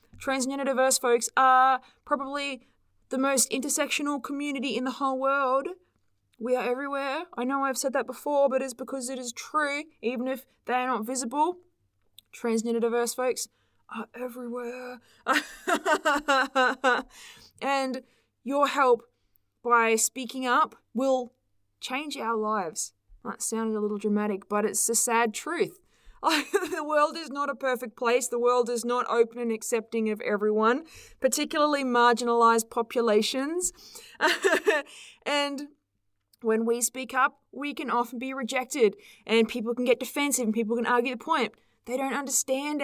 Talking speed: 140 wpm